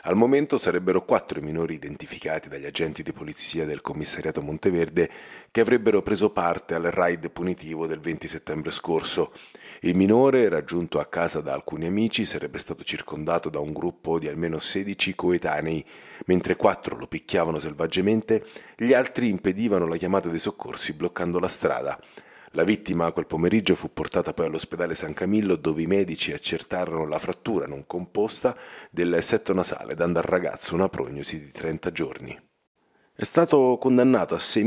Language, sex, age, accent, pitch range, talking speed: Italian, male, 40-59, native, 85-110 Hz, 160 wpm